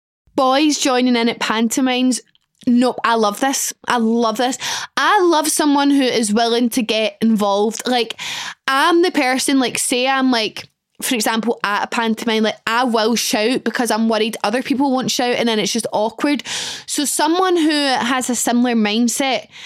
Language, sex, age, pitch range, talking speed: English, female, 10-29, 225-275 Hz, 175 wpm